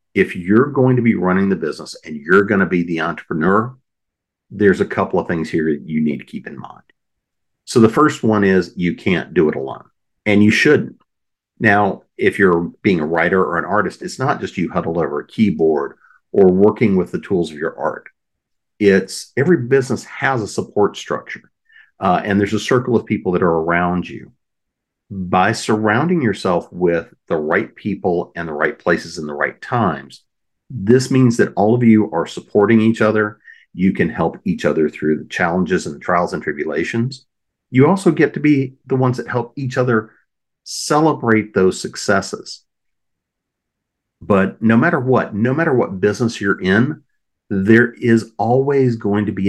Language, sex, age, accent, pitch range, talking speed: English, male, 50-69, American, 95-125 Hz, 185 wpm